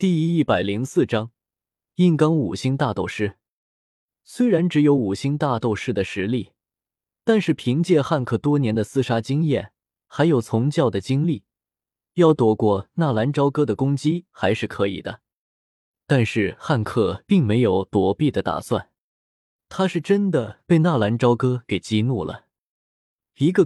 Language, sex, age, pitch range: Chinese, male, 20-39, 105-155 Hz